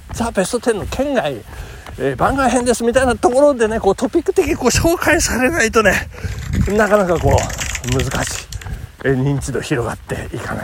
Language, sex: Japanese, male